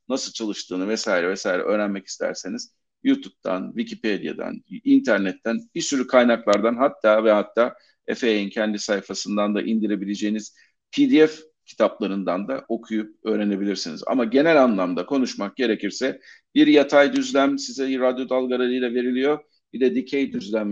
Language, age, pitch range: Turkish, 50-69, 110-150 Hz